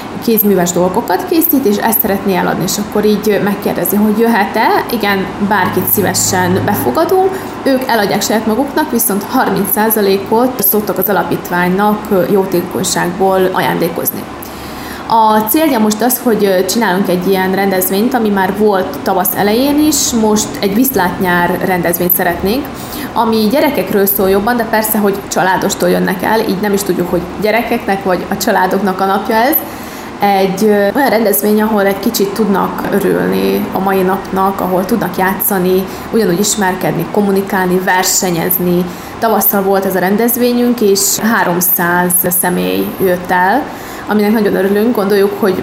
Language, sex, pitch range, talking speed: Hungarian, female, 185-215 Hz, 135 wpm